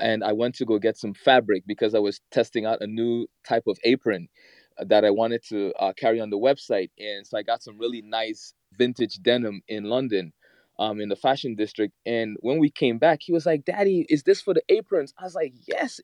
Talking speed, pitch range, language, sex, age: 230 wpm, 115-170 Hz, English, male, 20-39